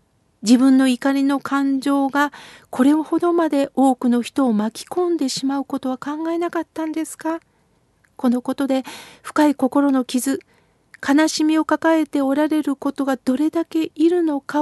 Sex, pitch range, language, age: female, 255-315 Hz, Japanese, 50-69